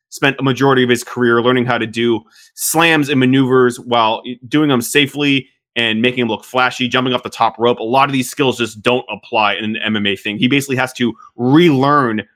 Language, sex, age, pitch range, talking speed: English, male, 20-39, 110-130 Hz, 215 wpm